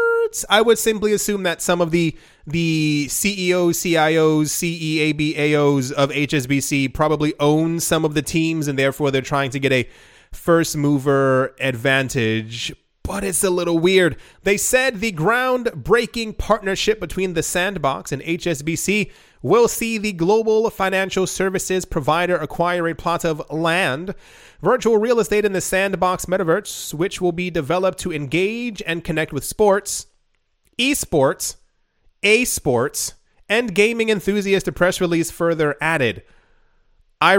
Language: English